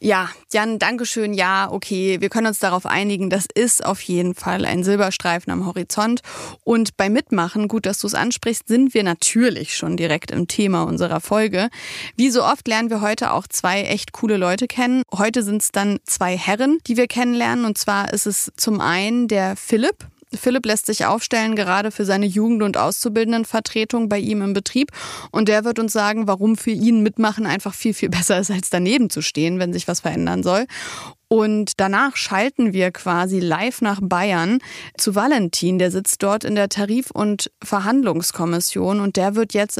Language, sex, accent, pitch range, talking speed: German, female, German, 190-225 Hz, 185 wpm